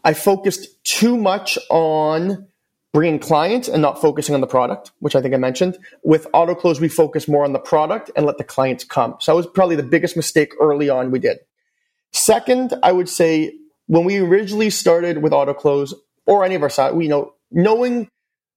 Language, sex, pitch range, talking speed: English, male, 150-200 Hz, 205 wpm